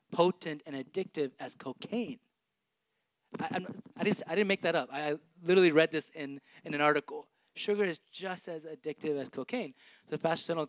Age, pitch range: 20-39, 150-210 Hz